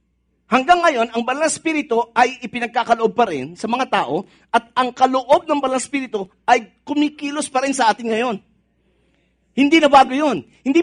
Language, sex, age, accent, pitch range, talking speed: English, male, 50-69, Filipino, 220-280 Hz, 160 wpm